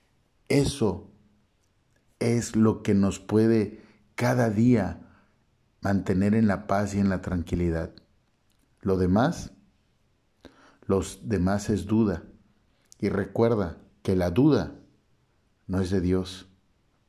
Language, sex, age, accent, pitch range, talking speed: Spanish, male, 50-69, Mexican, 100-115 Hz, 110 wpm